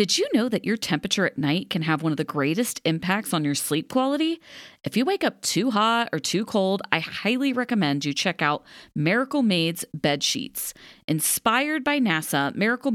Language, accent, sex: English, American, female